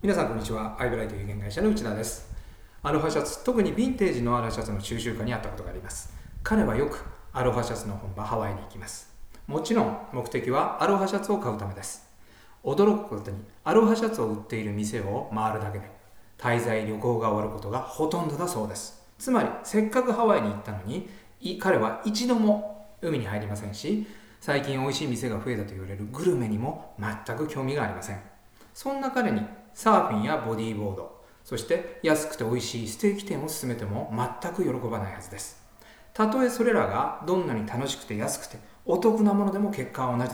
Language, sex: Japanese, male